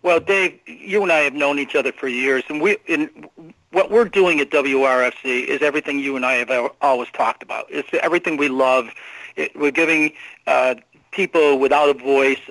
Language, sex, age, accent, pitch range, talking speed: English, male, 50-69, American, 135-160 Hz, 190 wpm